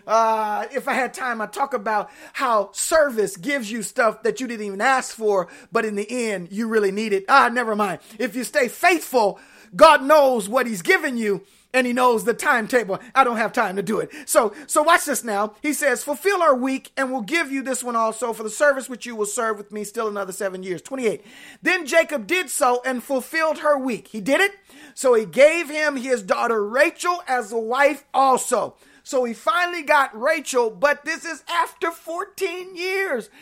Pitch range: 230-330 Hz